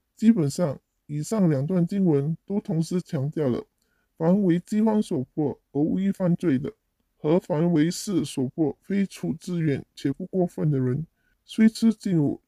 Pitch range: 145-190 Hz